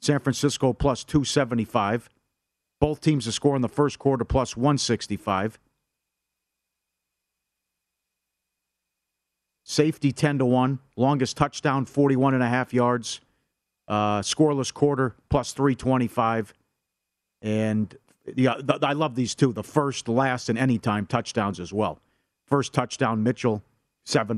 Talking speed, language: 125 wpm, English